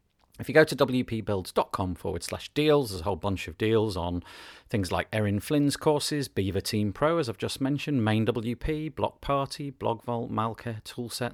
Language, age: English, 40-59